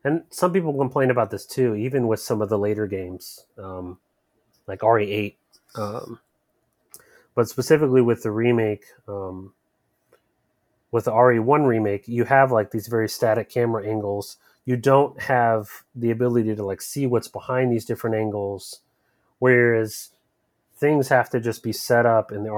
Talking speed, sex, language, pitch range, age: 155 wpm, male, English, 105-125 Hz, 30-49